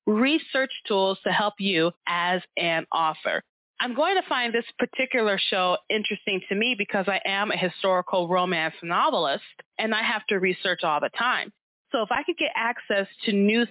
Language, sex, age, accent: English, female, 30-49, American